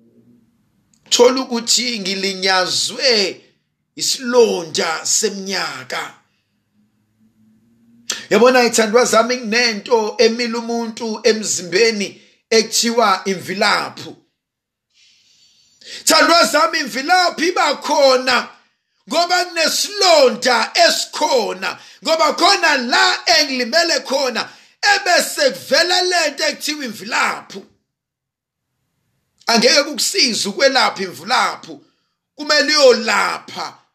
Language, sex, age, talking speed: English, male, 50-69, 65 wpm